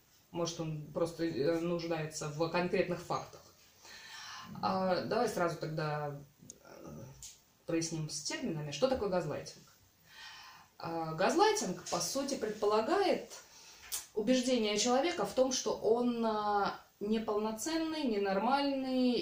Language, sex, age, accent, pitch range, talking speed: Russian, female, 20-39, native, 175-225 Hz, 85 wpm